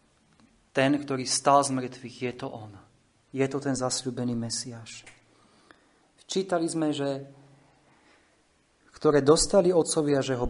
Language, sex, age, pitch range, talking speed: Slovak, male, 40-59, 125-160 Hz, 120 wpm